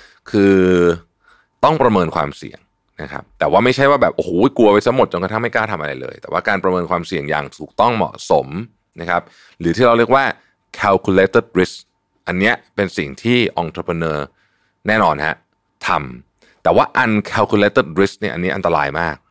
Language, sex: Thai, male